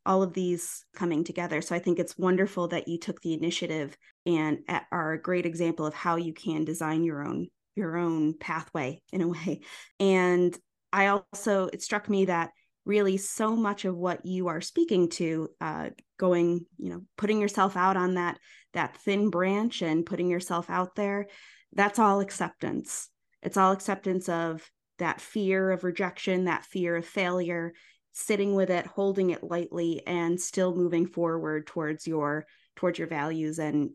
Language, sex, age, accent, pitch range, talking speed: English, female, 20-39, American, 165-190 Hz, 170 wpm